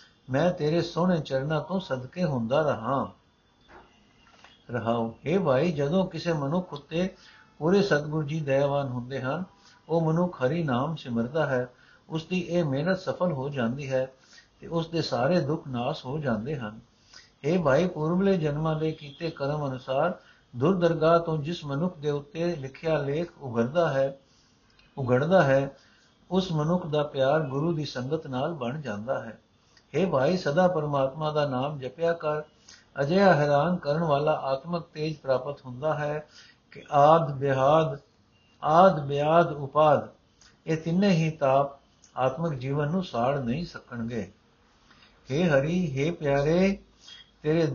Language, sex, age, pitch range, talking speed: Punjabi, male, 60-79, 135-170 Hz, 140 wpm